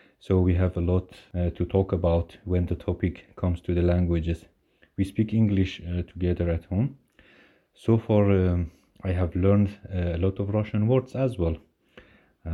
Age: 30-49